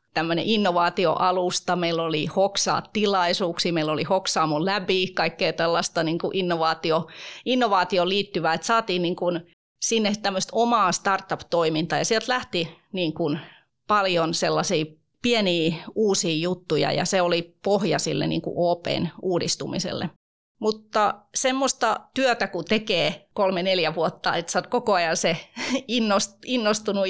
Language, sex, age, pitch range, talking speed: Finnish, female, 30-49, 175-220 Hz, 120 wpm